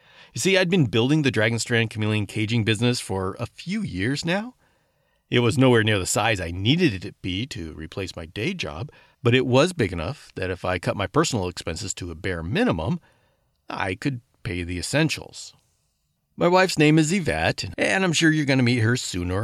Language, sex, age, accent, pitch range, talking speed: English, male, 40-59, American, 105-155 Hz, 205 wpm